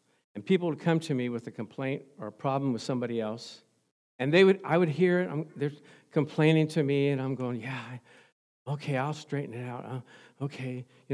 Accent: American